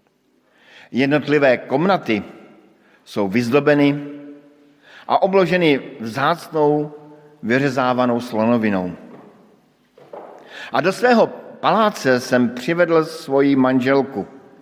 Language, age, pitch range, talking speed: Slovak, 50-69, 115-140 Hz, 70 wpm